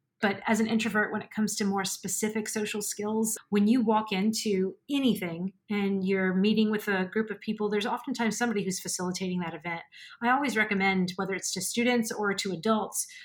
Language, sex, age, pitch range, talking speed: English, female, 30-49, 190-225 Hz, 190 wpm